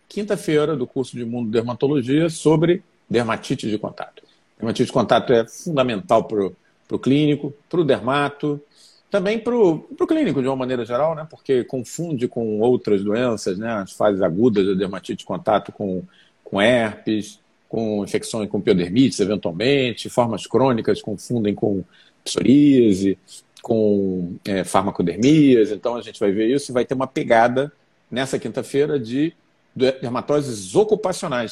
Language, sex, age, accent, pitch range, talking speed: Portuguese, male, 40-59, Brazilian, 105-145 Hz, 140 wpm